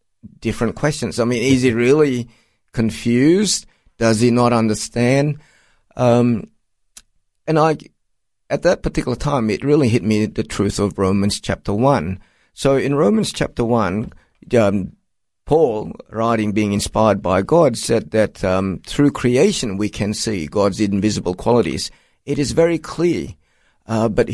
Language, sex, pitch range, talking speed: English, male, 100-130 Hz, 145 wpm